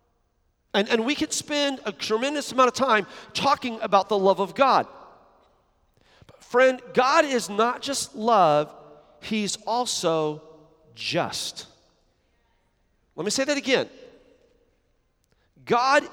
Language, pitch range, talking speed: English, 155-235 Hz, 115 wpm